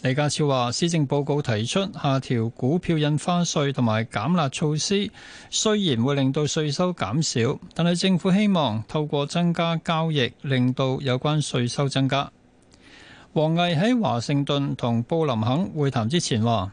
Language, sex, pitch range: Chinese, male, 120-160 Hz